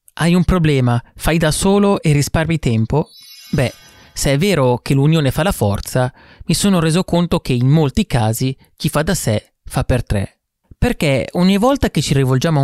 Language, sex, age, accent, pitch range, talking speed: Italian, male, 30-49, native, 120-165 Hz, 190 wpm